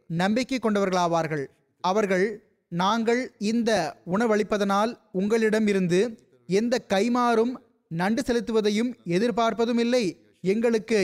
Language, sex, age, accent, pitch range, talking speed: Tamil, male, 30-49, native, 185-230 Hz, 75 wpm